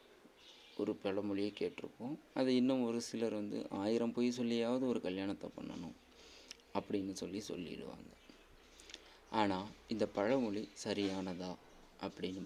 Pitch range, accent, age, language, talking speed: 95-115 Hz, Indian, 30-49, English, 105 wpm